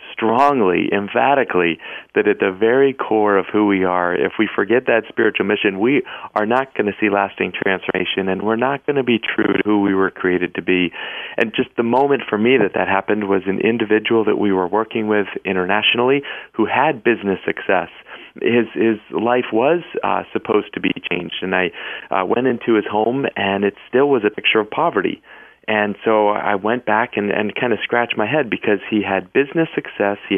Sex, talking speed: male, 205 wpm